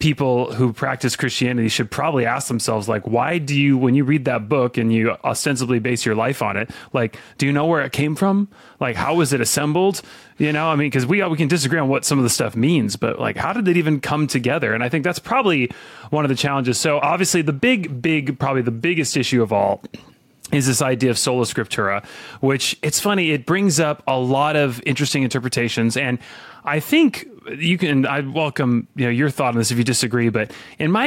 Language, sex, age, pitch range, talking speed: English, male, 30-49, 120-150 Hz, 230 wpm